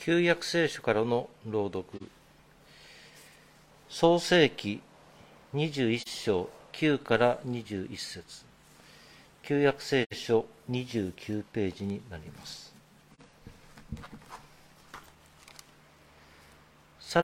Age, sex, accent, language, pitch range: 50-69, male, native, Japanese, 105-150 Hz